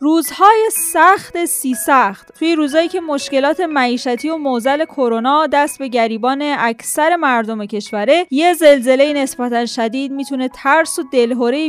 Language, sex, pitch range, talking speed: Persian, female, 225-280 Hz, 135 wpm